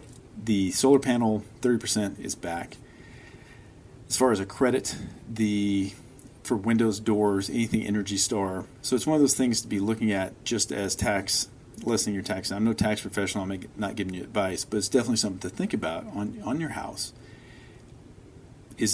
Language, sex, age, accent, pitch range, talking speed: English, male, 40-59, American, 100-120 Hz, 175 wpm